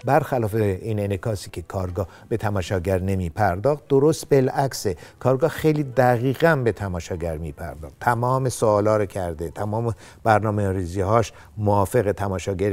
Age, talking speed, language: 60-79, 130 wpm, Persian